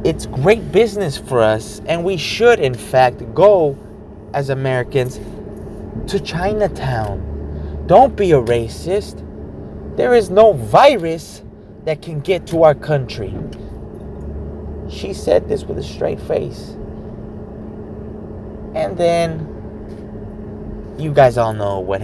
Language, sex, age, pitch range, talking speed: English, male, 20-39, 105-155 Hz, 115 wpm